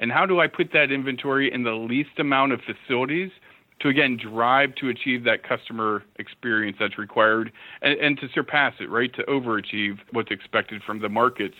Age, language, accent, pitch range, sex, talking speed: 40-59, English, American, 115-135 Hz, male, 185 wpm